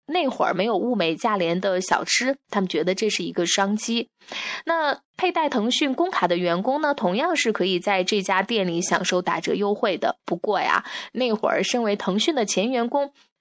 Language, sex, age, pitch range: Chinese, female, 20-39, 190-265 Hz